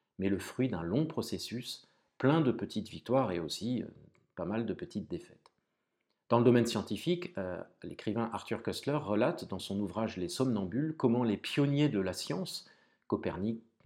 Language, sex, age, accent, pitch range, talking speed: French, male, 40-59, French, 100-130 Hz, 160 wpm